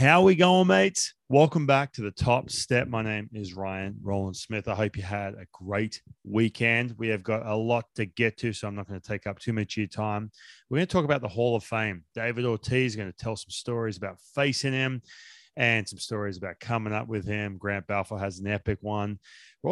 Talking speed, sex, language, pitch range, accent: 235 wpm, male, English, 105-130 Hz, Australian